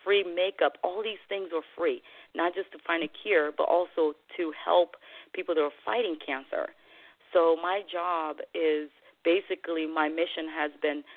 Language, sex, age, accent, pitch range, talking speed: English, female, 40-59, American, 150-175 Hz, 165 wpm